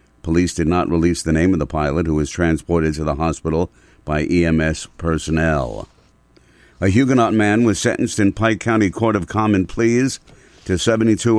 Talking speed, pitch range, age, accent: 170 wpm, 80-100 Hz, 50-69, American